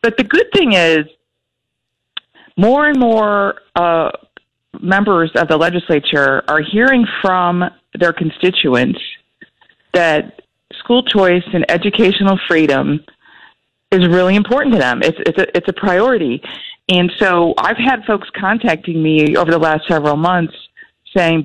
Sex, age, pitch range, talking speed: female, 40-59, 160-200 Hz, 130 wpm